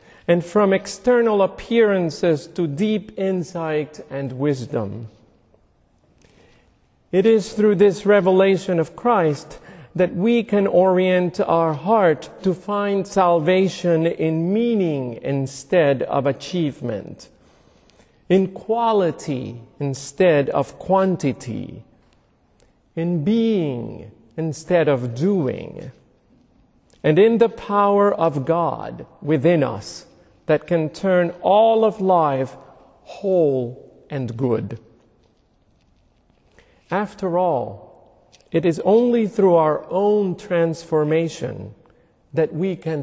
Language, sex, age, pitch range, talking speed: English, male, 50-69, 135-190 Hz, 95 wpm